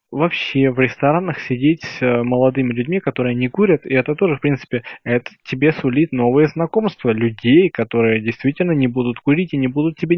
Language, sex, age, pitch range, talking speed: Russian, male, 20-39, 120-155 Hz, 175 wpm